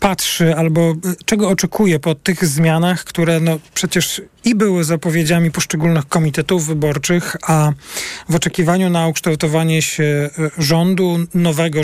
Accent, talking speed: native, 115 wpm